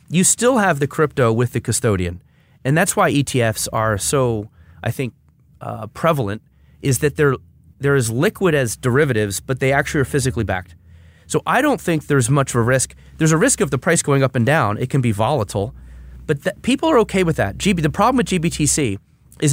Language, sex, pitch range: English, male, 115-155 Hz